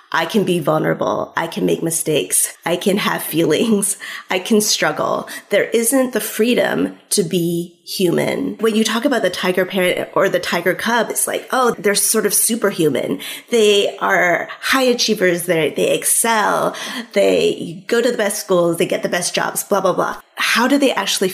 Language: English